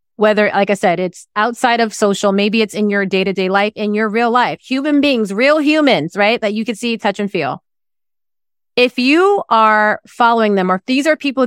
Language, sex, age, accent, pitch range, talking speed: English, female, 30-49, American, 185-230 Hz, 205 wpm